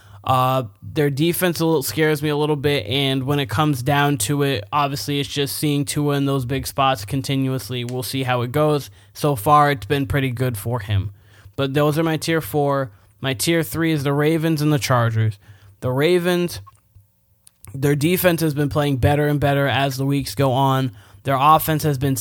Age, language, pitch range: 20-39, English, 125-145 Hz